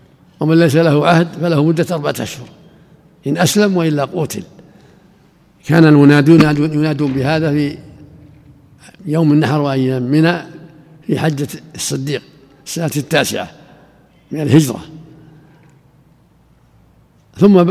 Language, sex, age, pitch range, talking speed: Arabic, male, 60-79, 140-160 Hz, 100 wpm